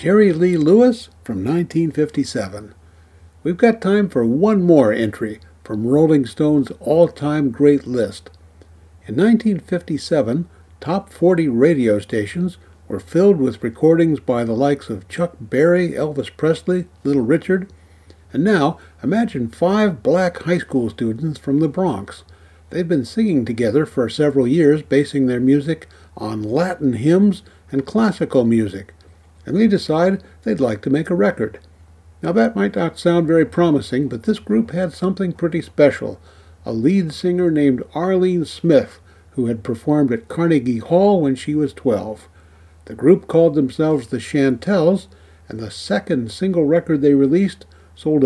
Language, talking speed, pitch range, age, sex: English, 145 wpm, 110-170 Hz, 60-79, male